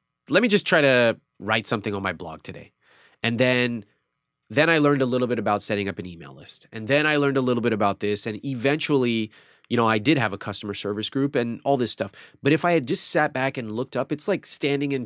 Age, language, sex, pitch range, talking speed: 30-49, English, male, 105-140 Hz, 250 wpm